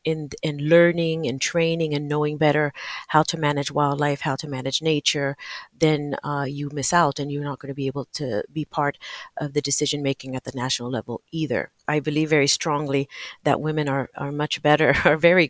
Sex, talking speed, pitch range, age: female, 205 wpm, 140-160 Hz, 40-59